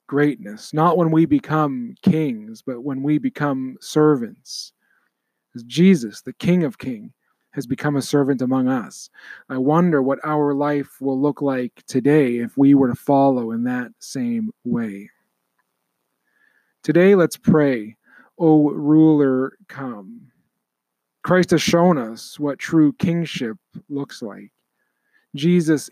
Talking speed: 130 wpm